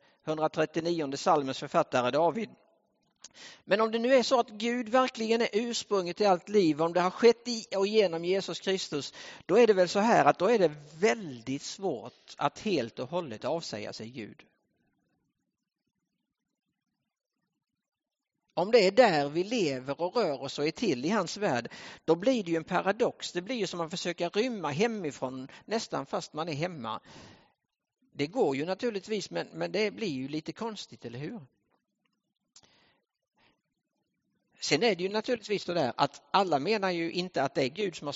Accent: Norwegian